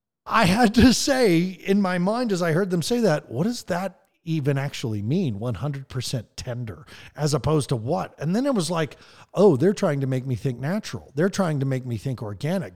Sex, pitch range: male, 140-200 Hz